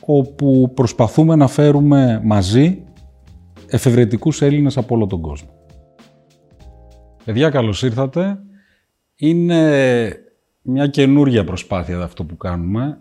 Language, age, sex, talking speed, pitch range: Greek, 30-49, male, 95 wpm, 95-135 Hz